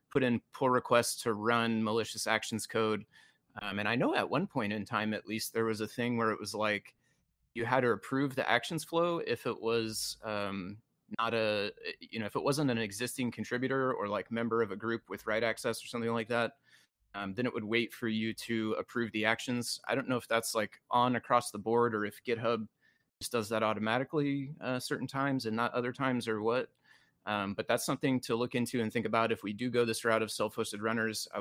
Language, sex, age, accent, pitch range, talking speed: English, male, 30-49, American, 110-120 Hz, 225 wpm